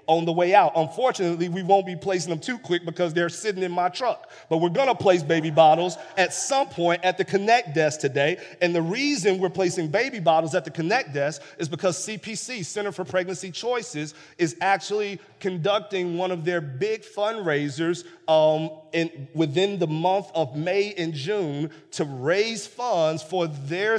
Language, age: English, 40-59